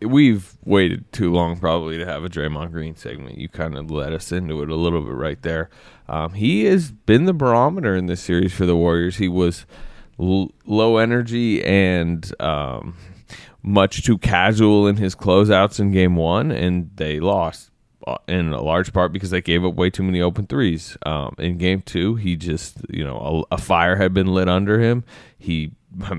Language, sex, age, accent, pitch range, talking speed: English, male, 20-39, American, 85-100 Hz, 195 wpm